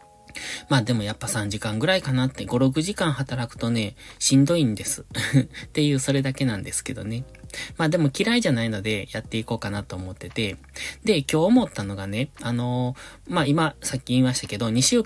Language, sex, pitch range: Japanese, male, 110-150 Hz